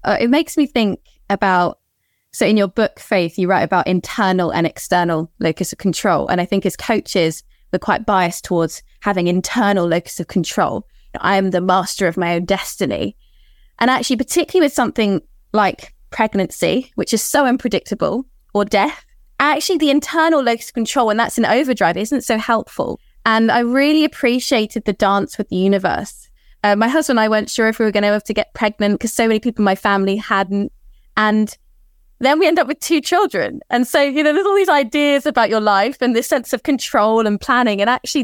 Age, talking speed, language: 20-39, 200 wpm, English